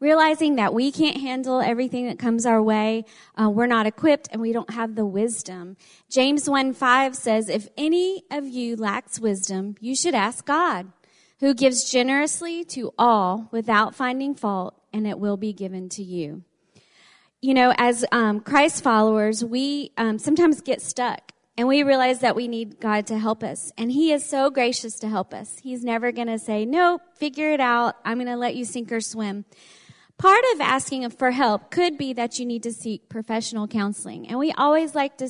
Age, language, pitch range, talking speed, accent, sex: 30-49, English, 220-270 Hz, 195 wpm, American, female